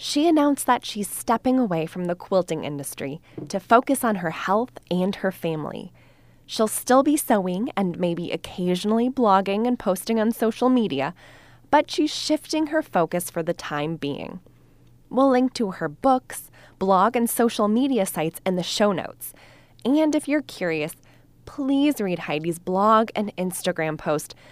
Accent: American